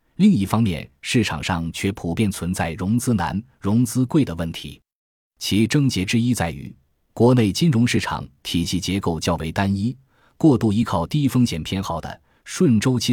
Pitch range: 85-115 Hz